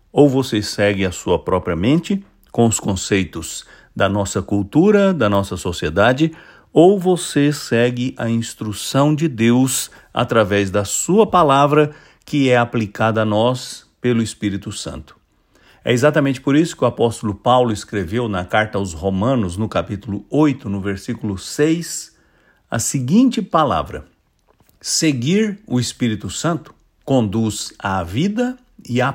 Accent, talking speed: Brazilian, 135 wpm